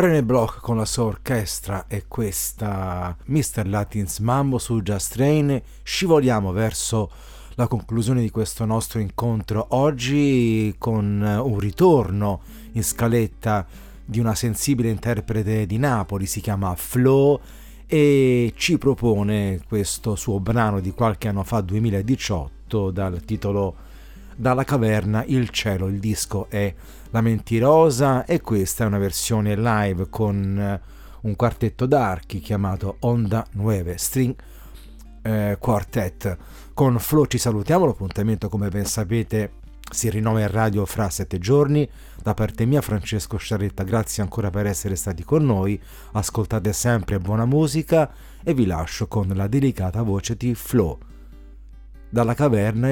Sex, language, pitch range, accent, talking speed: male, Italian, 100-120 Hz, native, 135 wpm